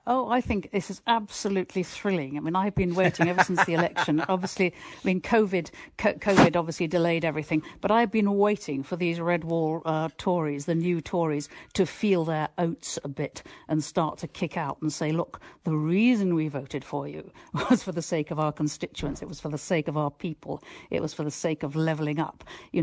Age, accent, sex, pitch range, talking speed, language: 50-69, British, female, 165-210 Hz, 215 wpm, English